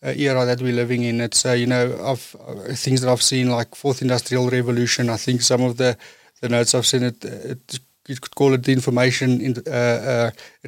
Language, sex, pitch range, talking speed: English, male, 125-150 Hz, 230 wpm